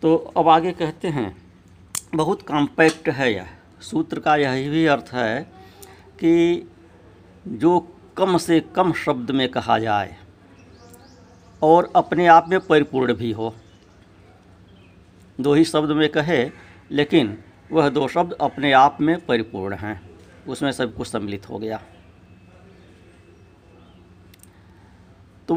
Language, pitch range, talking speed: Hindi, 95-140 Hz, 120 wpm